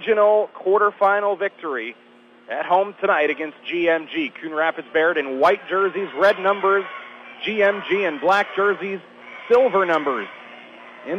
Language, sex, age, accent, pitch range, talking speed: English, male, 40-59, American, 155-205 Hz, 115 wpm